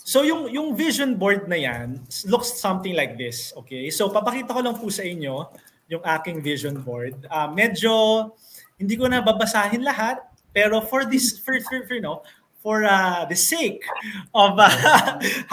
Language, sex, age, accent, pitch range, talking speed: English, male, 20-39, Filipino, 155-225 Hz, 175 wpm